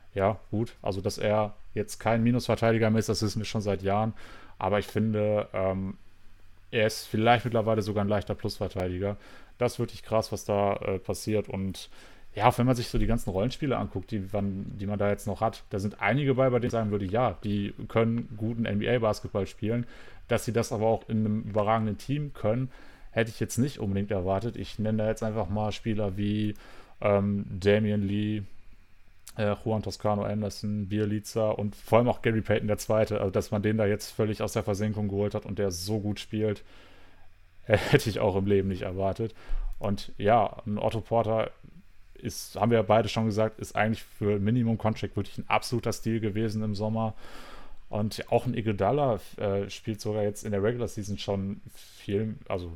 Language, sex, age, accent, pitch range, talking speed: German, male, 30-49, German, 100-110 Hz, 195 wpm